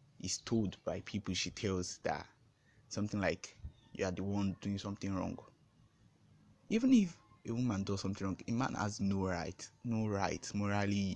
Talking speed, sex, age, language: 165 wpm, male, 20-39, English